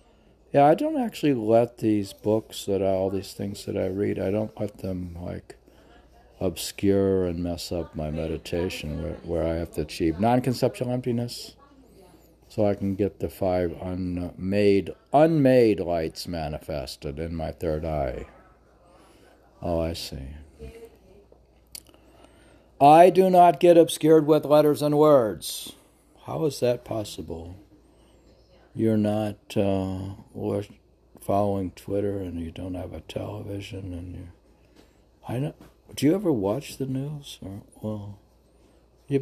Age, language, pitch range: 60-79, English, 90-125 Hz